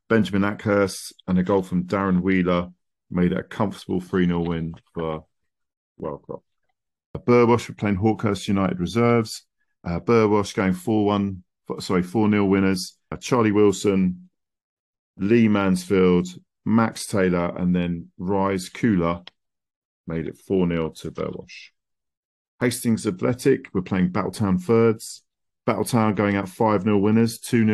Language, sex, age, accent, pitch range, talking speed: English, male, 40-59, British, 90-110 Hz, 125 wpm